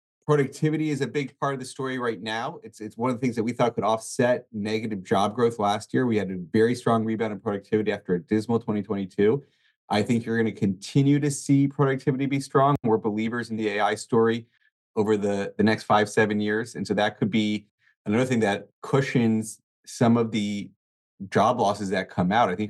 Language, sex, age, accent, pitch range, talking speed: English, male, 30-49, American, 105-120 Hz, 215 wpm